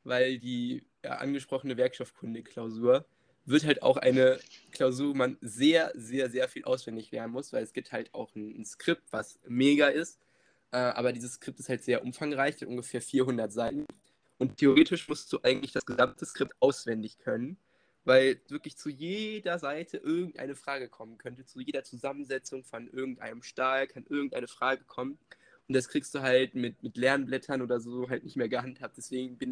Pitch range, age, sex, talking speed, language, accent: 120-140 Hz, 20-39, male, 175 wpm, German, German